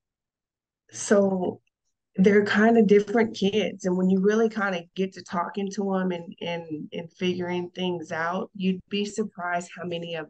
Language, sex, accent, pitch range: English, female, American, 175-205 Hz